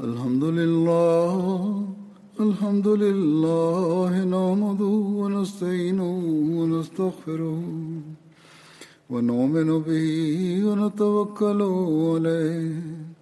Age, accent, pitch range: 50-69, native, 160-205 Hz